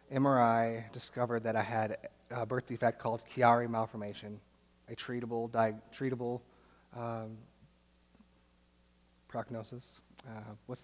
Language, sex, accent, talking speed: English, male, American, 105 wpm